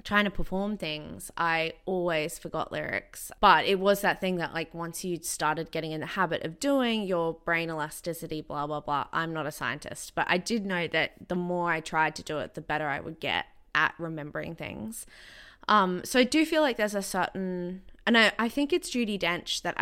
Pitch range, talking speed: 160-195 Hz, 215 wpm